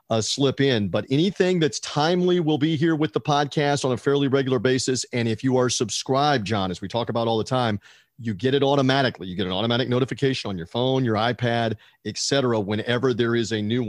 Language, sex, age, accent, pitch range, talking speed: English, male, 40-59, American, 115-145 Hz, 220 wpm